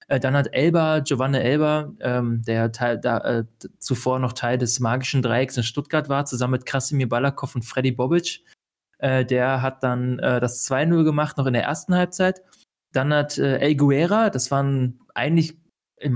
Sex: male